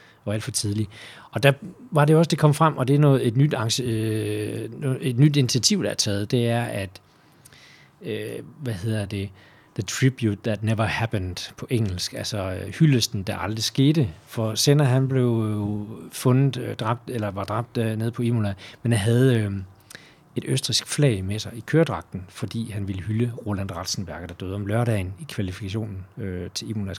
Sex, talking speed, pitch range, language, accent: male, 180 wpm, 100-120 Hz, Danish, native